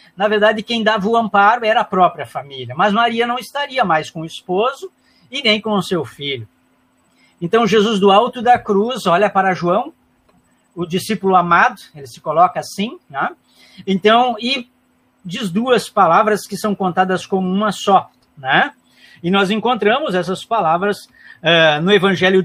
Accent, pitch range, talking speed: Brazilian, 170-220 Hz, 165 wpm